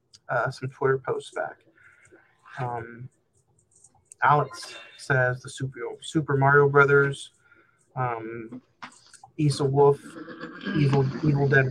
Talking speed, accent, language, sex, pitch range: 95 wpm, American, English, male, 125-140 Hz